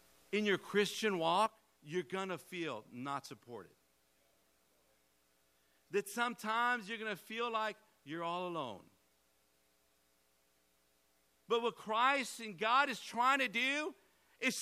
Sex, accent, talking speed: male, American, 115 wpm